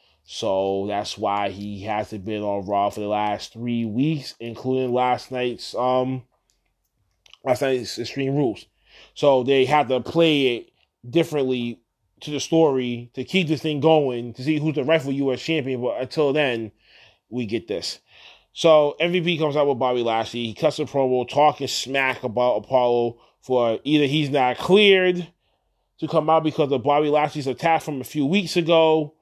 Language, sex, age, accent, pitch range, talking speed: English, male, 20-39, American, 125-170 Hz, 170 wpm